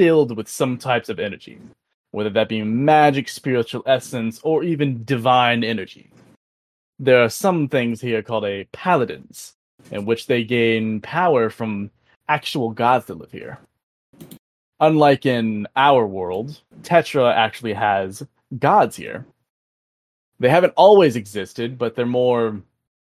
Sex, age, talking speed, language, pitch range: male, 20-39, 135 wpm, English, 110-140 Hz